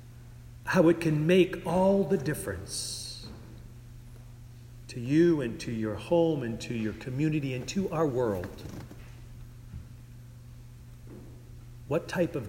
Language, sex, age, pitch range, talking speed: English, male, 40-59, 120-130 Hz, 115 wpm